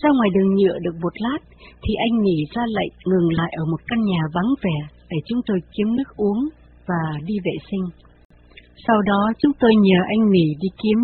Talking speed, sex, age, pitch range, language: 210 wpm, female, 60-79, 170-235 Hz, Vietnamese